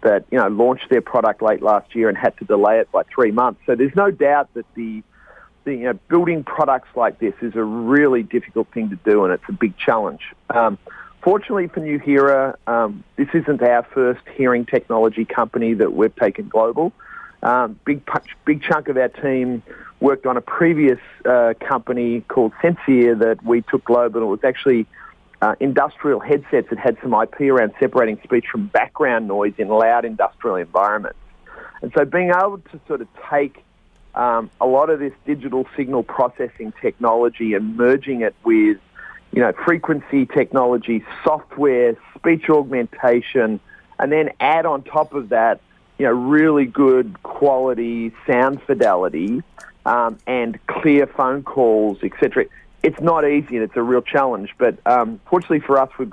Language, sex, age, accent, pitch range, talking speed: English, male, 40-59, Australian, 115-145 Hz, 175 wpm